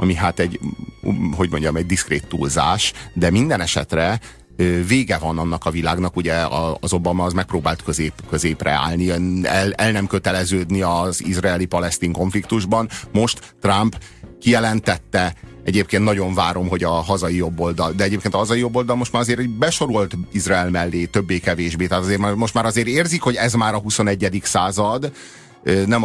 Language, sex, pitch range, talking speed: Hungarian, male, 90-125 Hz, 150 wpm